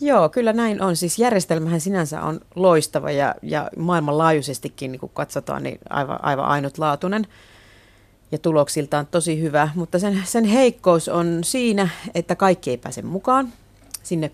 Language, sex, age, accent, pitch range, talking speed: Finnish, female, 30-49, native, 150-185 Hz, 140 wpm